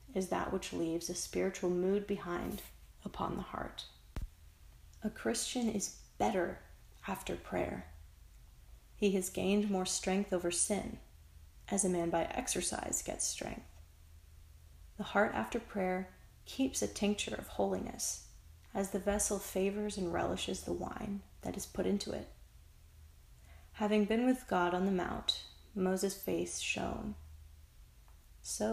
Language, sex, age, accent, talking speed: English, female, 30-49, American, 135 wpm